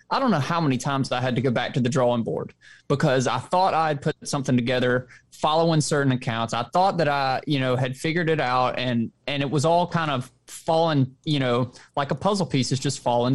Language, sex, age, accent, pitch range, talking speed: English, male, 20-39, American, 130-175 Hz, 235 wpm